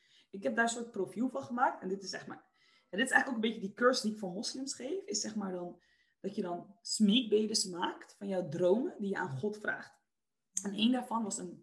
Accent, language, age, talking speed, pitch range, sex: Dutch, Dutch, 20-39, 255 wpm, 190-260 Hz, female